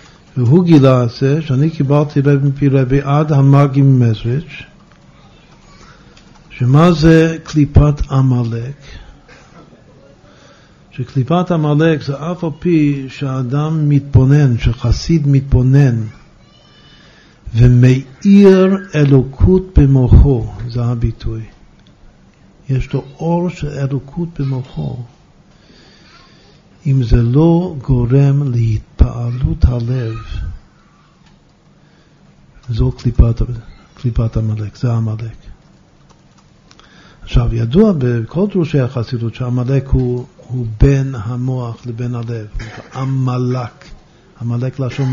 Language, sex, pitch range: Hebrew, male, 120-145 Hz